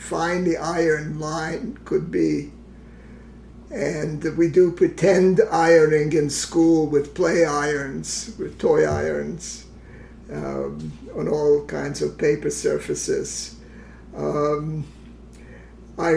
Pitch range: 145-165 Hz